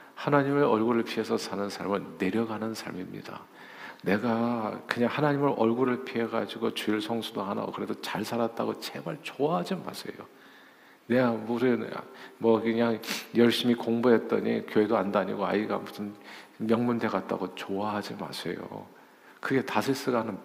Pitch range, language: 110-135 Hz, Korean